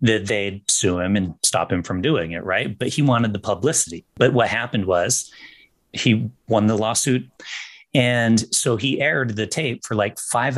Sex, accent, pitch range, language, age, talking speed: male, American, 95-125 Hz, English, 30-49, 185 wpm